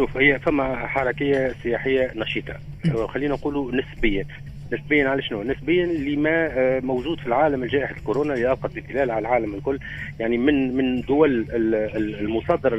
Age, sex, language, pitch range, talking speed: 40-59, male, Arabic, 120-145 Hz, 130 wpm